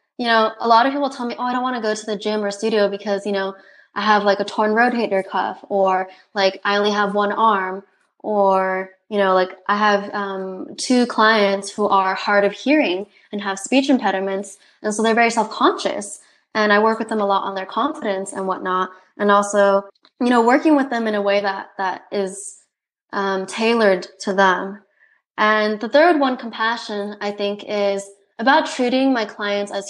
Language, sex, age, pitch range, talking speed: English, female, 20-39, 195-230 Hz, 205 wpm